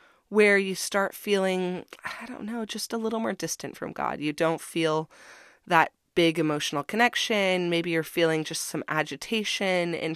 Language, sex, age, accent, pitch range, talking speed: English, female, 20-39, American, 155-215 Hz, 165 wpm